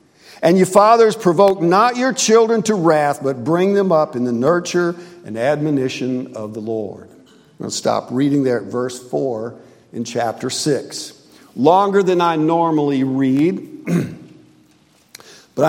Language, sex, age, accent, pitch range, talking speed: English, male, 50-69, American, 150-200 Hz, 150 wpm